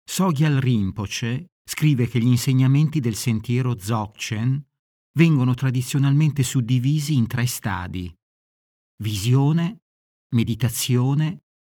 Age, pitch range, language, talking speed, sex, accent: 50-69, 105-135 Hz, Italian, 85 wpm, male, native